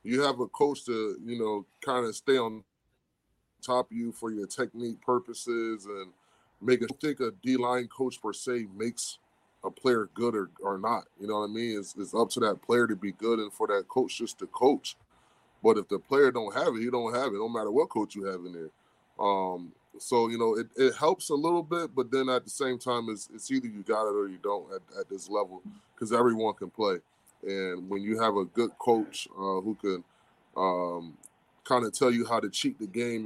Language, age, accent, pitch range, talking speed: English, 20-39, American, 100-120 Hz, 230 wpm